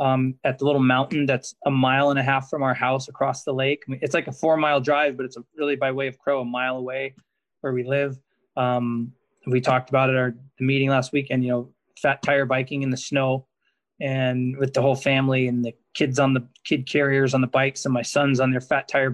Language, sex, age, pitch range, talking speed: English, male, 20-39, 130-140 Hz, 250 wpm